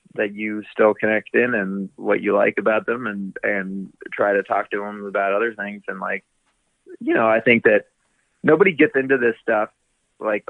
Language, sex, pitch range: English, male, 100-110 Hz